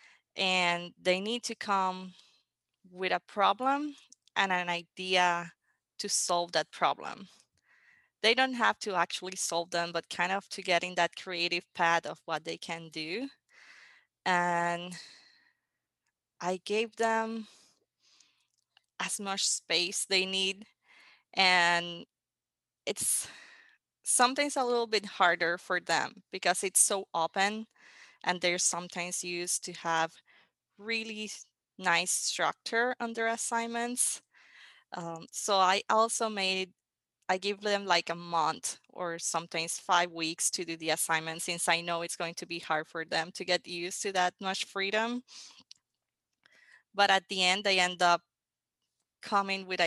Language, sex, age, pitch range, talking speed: English, female, 20-39, 170-200 Hz, 140 wpm